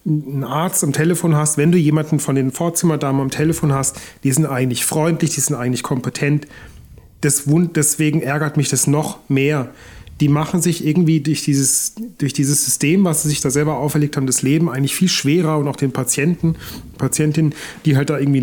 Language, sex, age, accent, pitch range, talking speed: German, male, 30-49, German, 145-175 Hz, 190 wpm